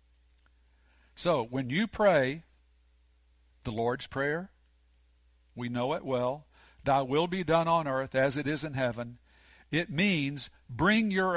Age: 50-69